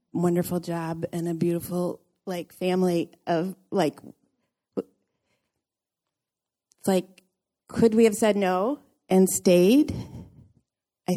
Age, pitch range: 40-59, 170-215 Hz